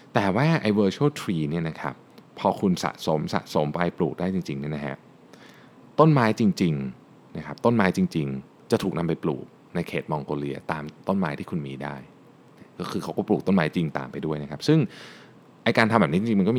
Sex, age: male, 20-39